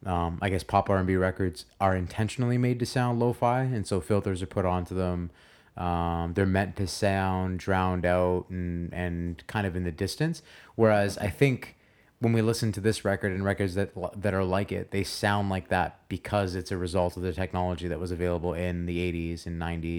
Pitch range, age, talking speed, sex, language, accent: 90-100 Hz, 20-39, 200 wpm, male, English, American